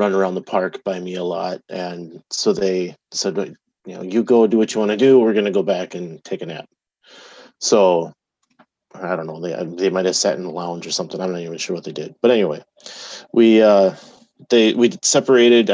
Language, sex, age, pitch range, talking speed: English, male, 30-49, 95-120 Hz, 225 wpm